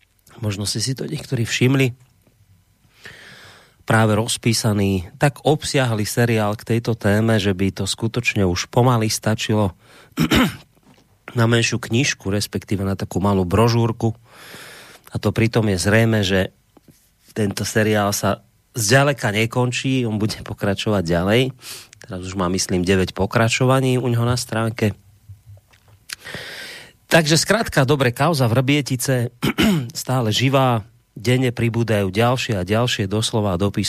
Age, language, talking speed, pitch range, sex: 30-49, Slovak, 120 wpm, 100-125 Hz, male